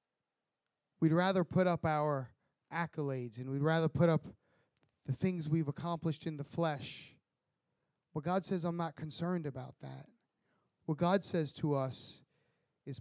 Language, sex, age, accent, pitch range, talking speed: English, male, 30-49, American, 135-175 Hz, 150 wpm